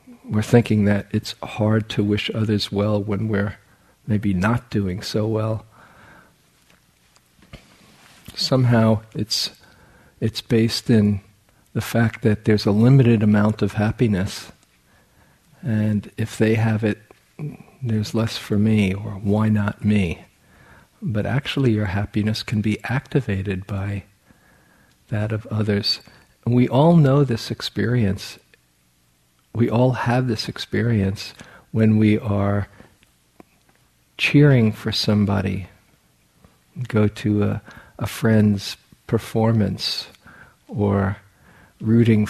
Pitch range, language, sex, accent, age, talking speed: 100-115 Hz, English, male, American, 50-69, 110 wpm